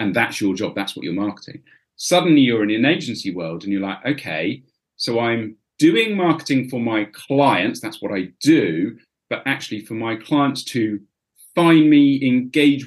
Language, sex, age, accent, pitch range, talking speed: English, male, 40-59, British, 110-160 Hz, 175 wpm